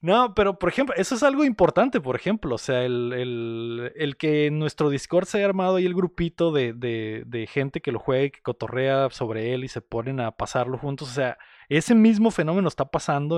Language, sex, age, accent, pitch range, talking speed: Spanish, male, 20-39, Mexican, 125-165 Hz, 220 wpm